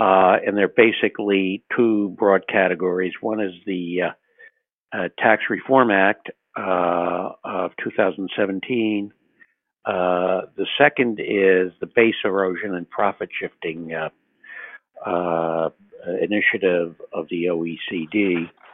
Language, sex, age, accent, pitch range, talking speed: English, male, 60-79, American, 85-105 Hz, 110 wpm